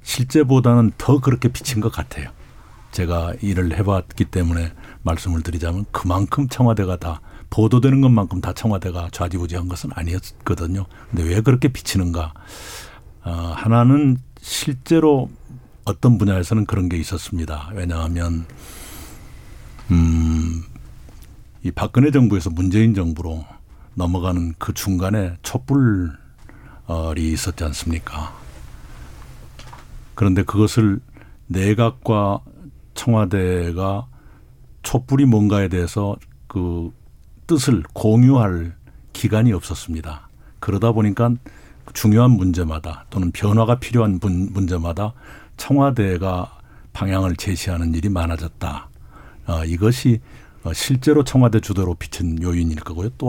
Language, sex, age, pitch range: Korean, male, 60-79, 85-115 Hz